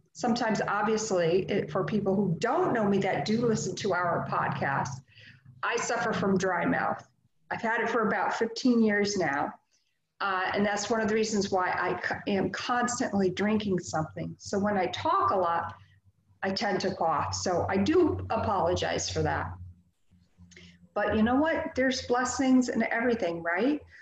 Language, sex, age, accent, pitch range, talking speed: English, female, 50-69, American, 180-220 Hz, 160 wpm